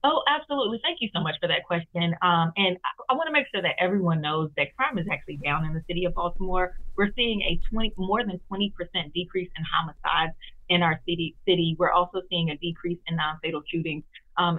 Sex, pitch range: female, 165-205 Hz